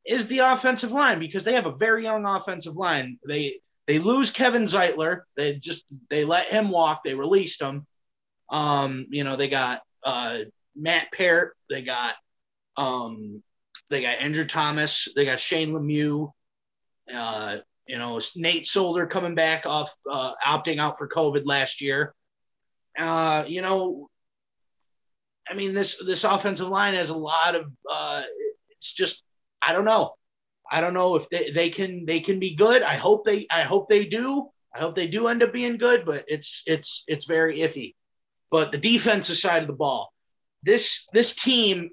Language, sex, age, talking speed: English, male, 30-49, 175 wpm